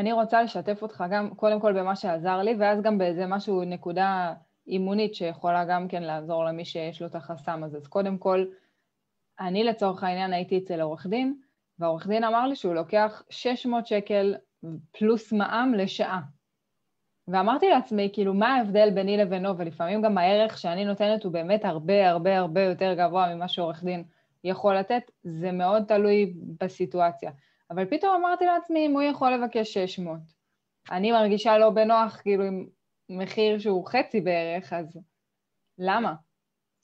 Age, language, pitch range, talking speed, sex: 20-39, Hebrew, 180-215 Hz, 155 wpm, female